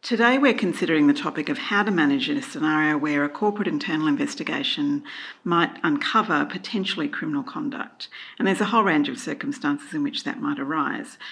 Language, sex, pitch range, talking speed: English, female, 170-290 Hz, 175 wpm